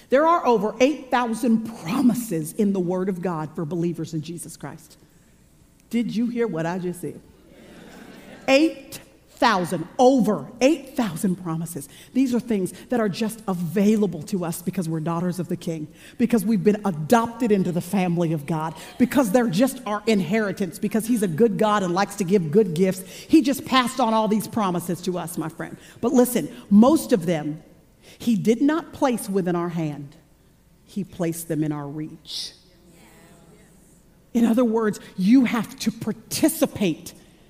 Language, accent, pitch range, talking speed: English, American, 185-265 Hz, 165 wpm